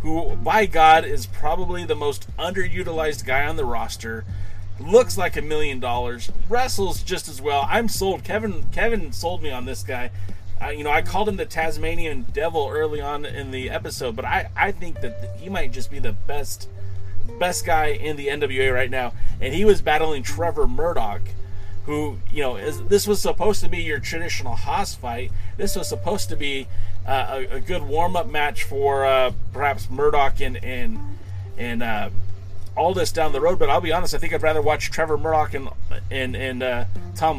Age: 30-49